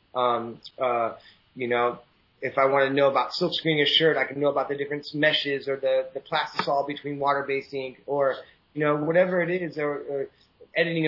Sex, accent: male, American